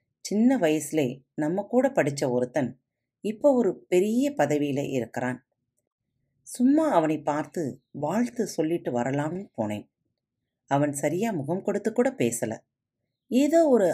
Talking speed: 110 wpm